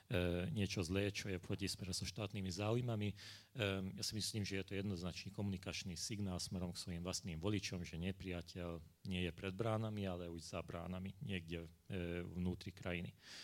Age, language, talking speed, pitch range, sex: 40-59, Slovak, 170 wpm, 90-105 Hz, male